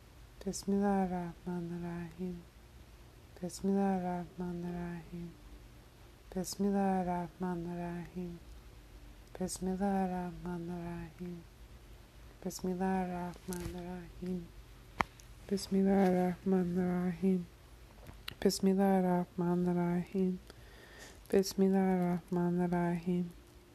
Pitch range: 170-180 Hz